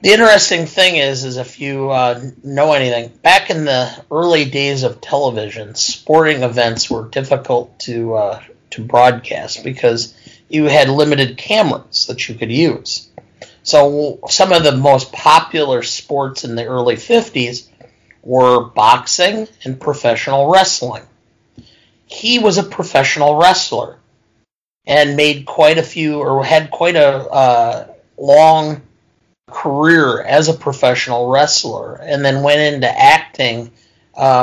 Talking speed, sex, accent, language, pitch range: 135 wpm, male, American, English, 120-155 Hz